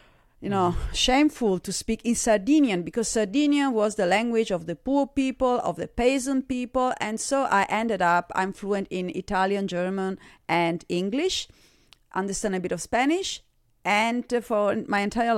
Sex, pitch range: female, 190-240 Hz